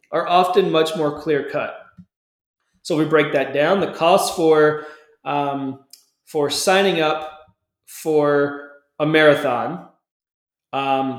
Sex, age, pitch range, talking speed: male, 30-49, 140-160 Hz, 120 wpm